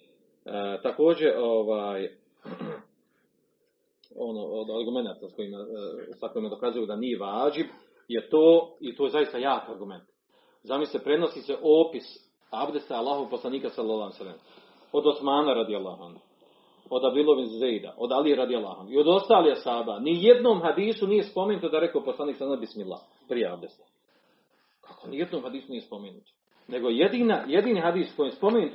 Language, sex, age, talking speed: Croatian, male, 40-59, 140 wpm